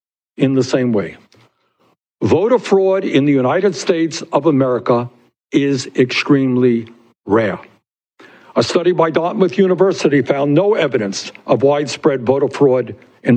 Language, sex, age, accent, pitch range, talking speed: English, male, 60-79, American, 140-190 Hz, 125 wpm